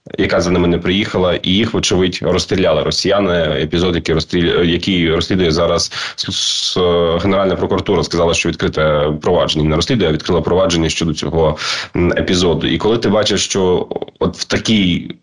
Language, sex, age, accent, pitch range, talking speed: Ukrainian, male, 20-39, native, 85-100 Hz, 150 wpm